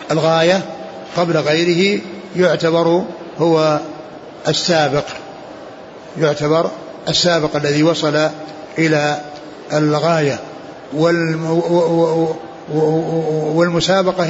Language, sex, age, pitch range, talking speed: Arabic, male, 60-79, 150-170 Hz, 55 wpm